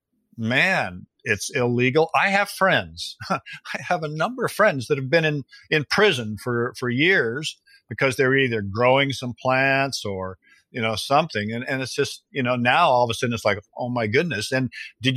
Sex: male